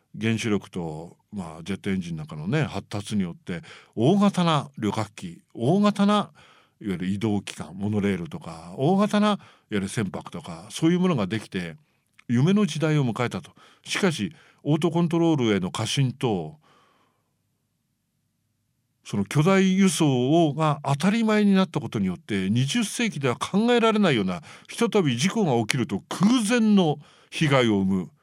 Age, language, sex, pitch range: 50-69, English, male, 115-185 Hz